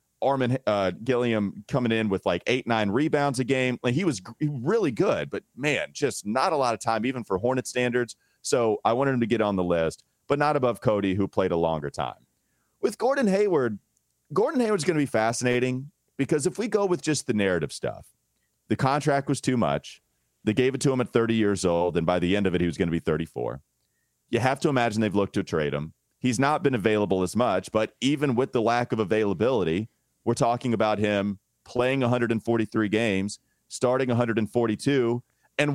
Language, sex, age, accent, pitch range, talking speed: English, male, 30-49, American, 100-135 Hz, 205 wpm